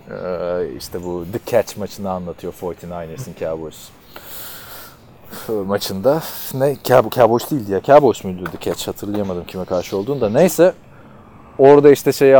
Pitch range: 105-145 Hz